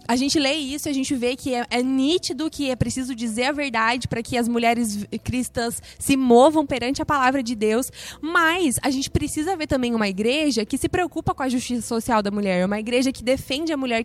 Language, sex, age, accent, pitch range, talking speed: Portuguese, female, 20-39, Brazilian, 240-285 Hz, 225 wpm